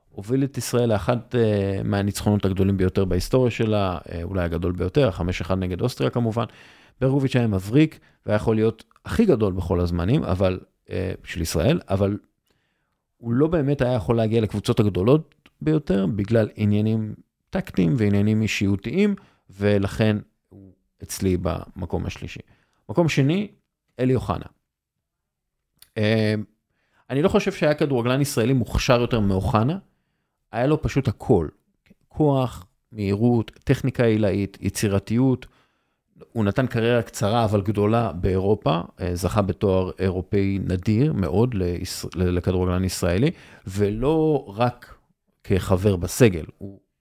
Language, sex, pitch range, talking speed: English, male, 95-120 Hz, 85 wpm